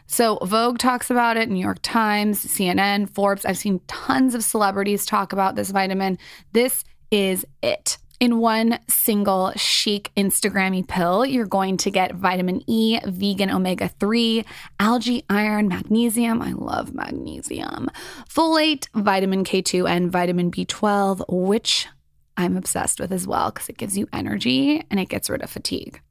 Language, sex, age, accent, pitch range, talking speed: English, female, 20-39, American, 190-230 Hz, 150 wpm